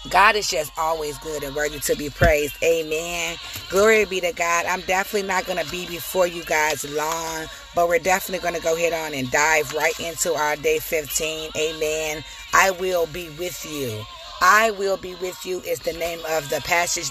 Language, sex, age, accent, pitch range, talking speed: English, female, 30-49, American, 155-190 Hz, 200 wpm